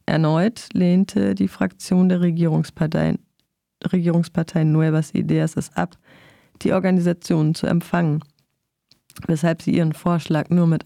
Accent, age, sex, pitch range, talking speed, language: German, 30-49, female, 150-175 Hz, 115 wpm, German